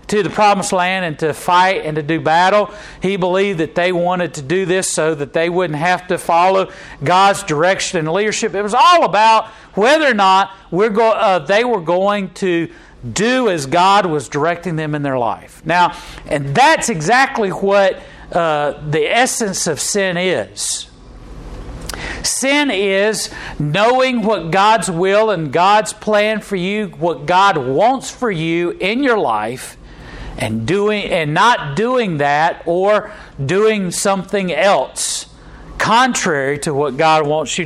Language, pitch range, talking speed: English, 165-210 Hz, 155 wpm